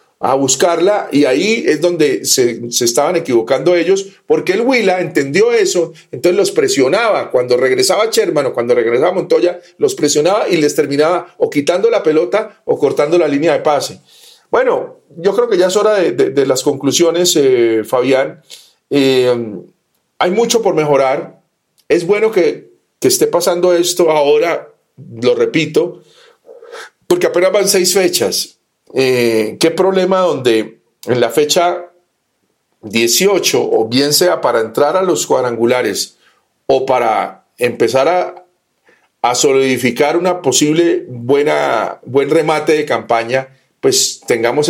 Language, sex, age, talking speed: Spanish, male, 40-59, 140 wpm